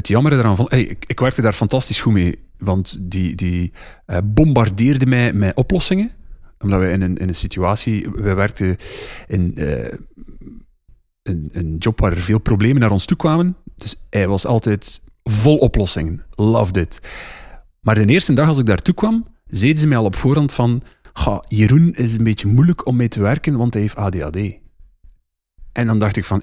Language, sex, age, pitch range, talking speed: Dutch, male, 40-59, 95-125 Hz, 185 wpm